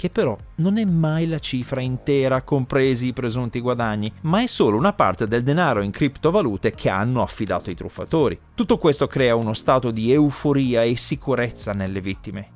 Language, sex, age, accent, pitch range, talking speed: Italian, male, 30-49, native, 115-170 Hz, 175 wpm